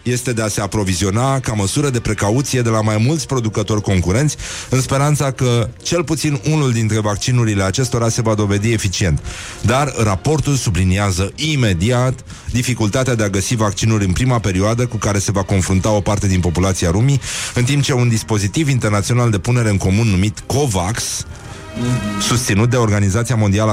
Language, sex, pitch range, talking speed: Romanian, male, 100-125 Hz, 165 wpm